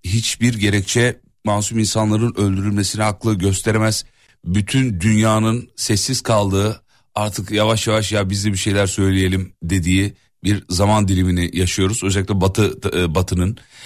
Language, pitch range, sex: Turkish, 95-110 Hz, male